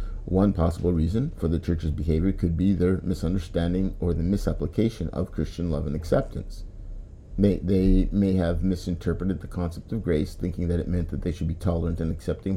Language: English